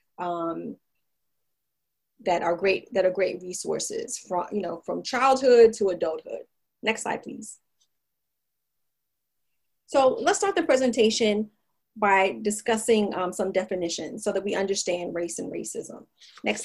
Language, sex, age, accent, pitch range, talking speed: English, female, 30-49, American, 185-230 Hz, 130 wpm